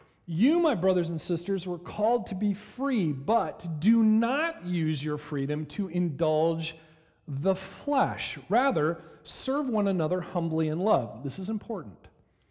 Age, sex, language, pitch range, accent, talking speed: 40-59, male, English, 140-200 Hz, American, 145 wpm